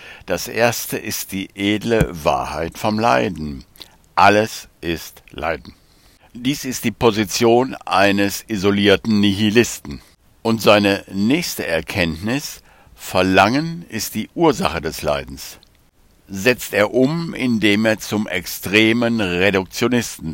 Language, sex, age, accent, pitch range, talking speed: German, male, 60-79, German, 95-115 Hz, 105 wpm